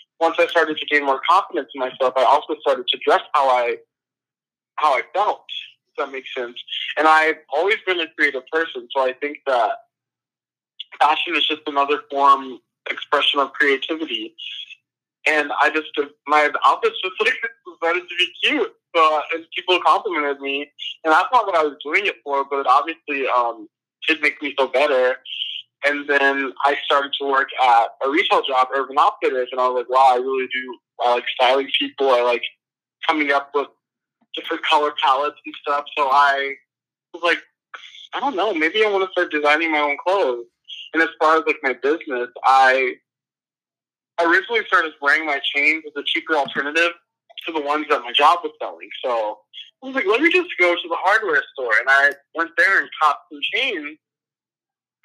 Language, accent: English, American